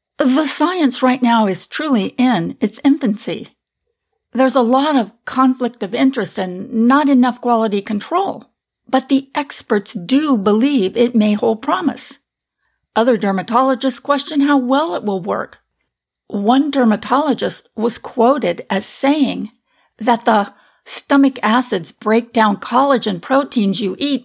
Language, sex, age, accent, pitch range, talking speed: English, female, 50-69, American, 220-270 Hz, 135 wpm